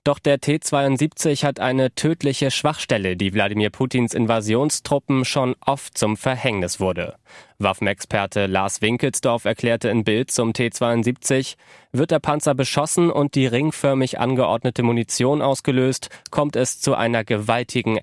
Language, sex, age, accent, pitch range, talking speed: German, male, 20-39, German, 115-140 Hz, 130 wpm